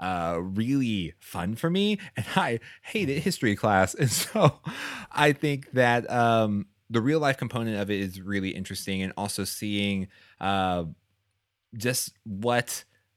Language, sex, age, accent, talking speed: English, male, 30-49, American, 135 wpm